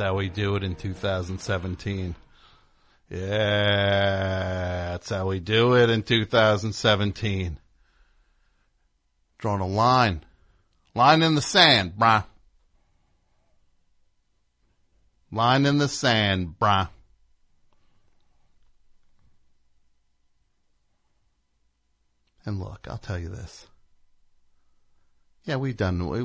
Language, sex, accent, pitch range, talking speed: English, male, American, 90-135 Hz, 80 wpm